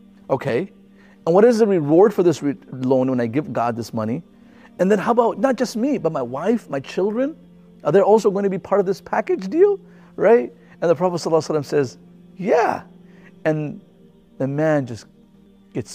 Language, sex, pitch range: English, male, 135-185 Hz